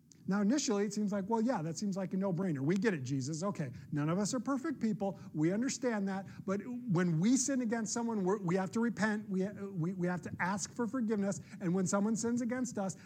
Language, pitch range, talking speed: English, 160-210 Hz, 230 wpm